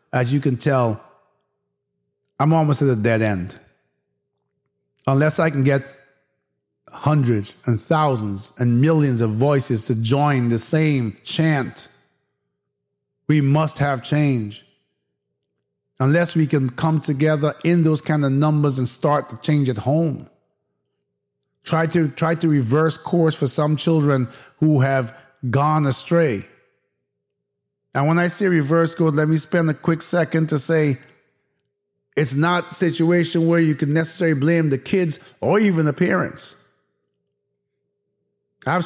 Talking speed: 135 wpm